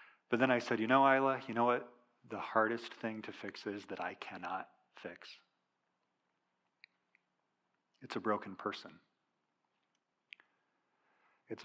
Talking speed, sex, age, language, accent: 130 wpm, male, 40-59, English, American